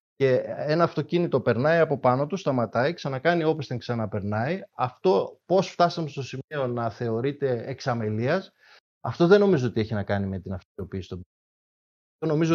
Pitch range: 120-155 Hz